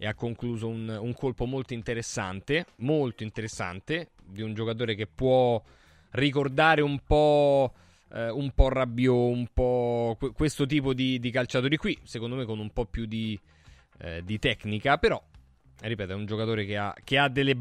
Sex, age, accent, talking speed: male, 20-39, native, 170 wpm